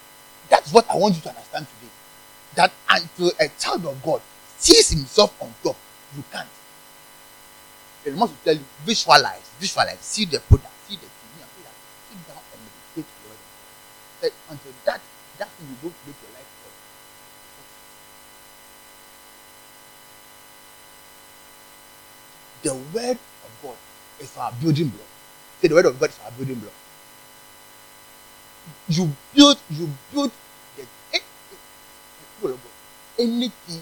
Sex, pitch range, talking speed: male, 140-145 Hz, 145 wpm